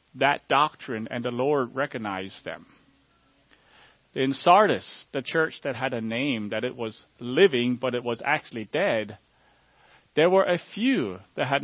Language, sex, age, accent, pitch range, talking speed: English, male, 40-59, American, 115-160 Hz, 155 wpm